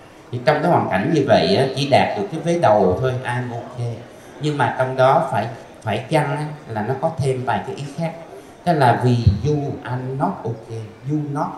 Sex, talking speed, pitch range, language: male, 210 wpm, 115-150 Hz, Vietnamese